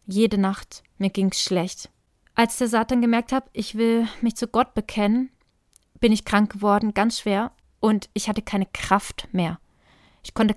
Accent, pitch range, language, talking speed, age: German, 195-240 Hz, German, 175 wpm, 20-39